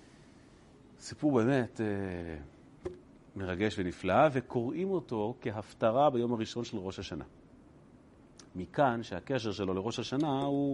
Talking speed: 105 wpm